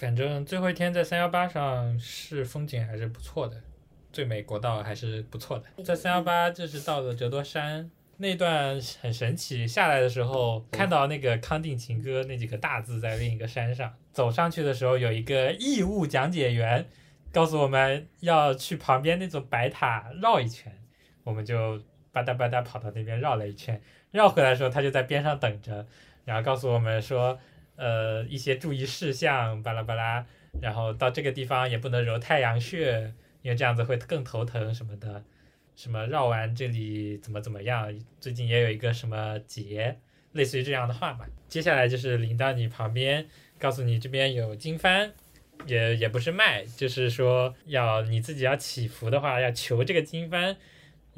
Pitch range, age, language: 115-145 Hz, 20-39, Chinese